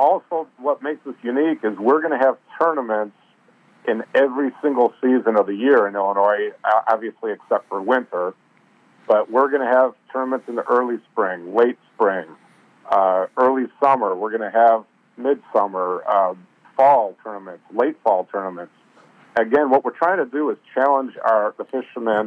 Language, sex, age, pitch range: English, male, 50-69, 105-130 Hz